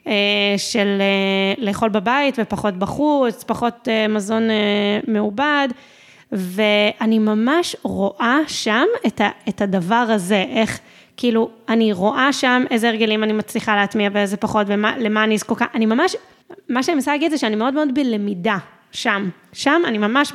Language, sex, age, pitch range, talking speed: Hebrew, female, 20-39, 215-265 Hz, 150 wpm